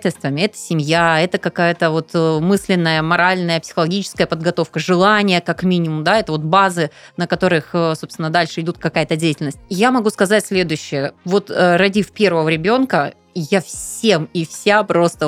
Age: 20-39